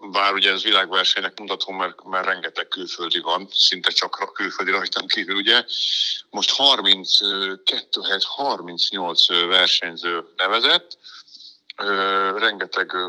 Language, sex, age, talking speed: Hungarian, male, 50-69, 95 wpm